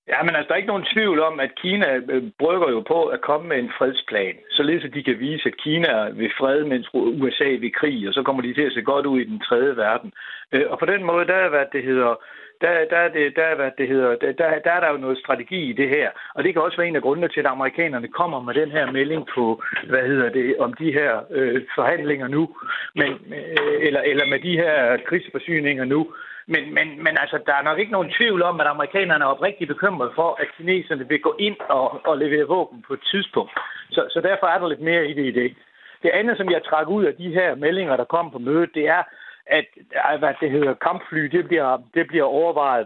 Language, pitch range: Danish, 135-170 Hz